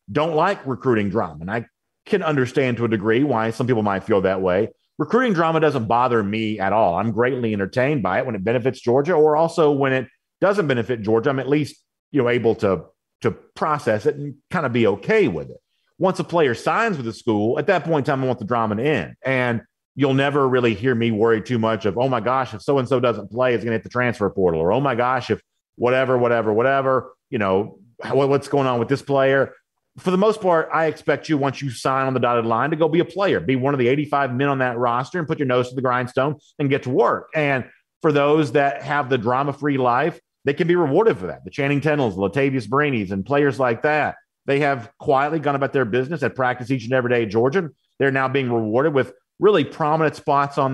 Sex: male